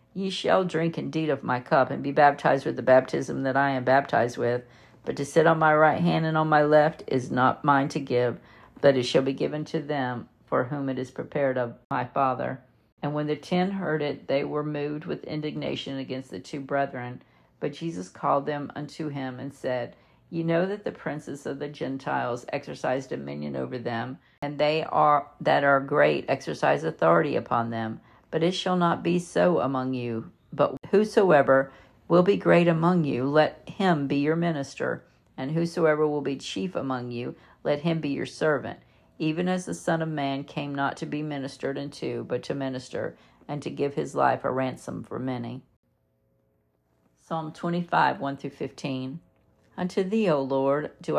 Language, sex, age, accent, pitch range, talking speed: English, female, 50-69, American, 130-160 Hz, 185 wpm